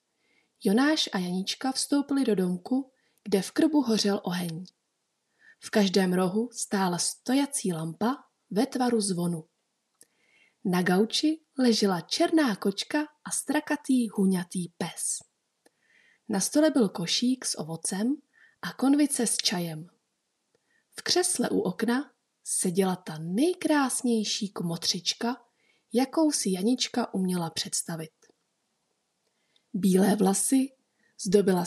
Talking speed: 105 wpm